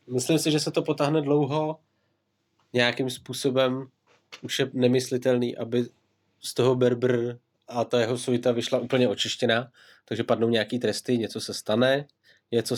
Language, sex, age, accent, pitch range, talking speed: Czech, male, 20-39, native, 115-135 Hz, 145 wpm